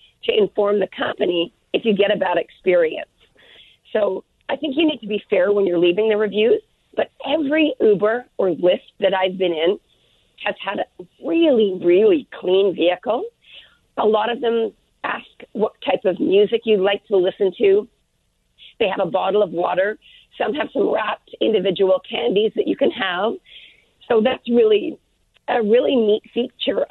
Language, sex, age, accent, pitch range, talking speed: English, female, 40-59, American, 195-255 Hz, 170 wpm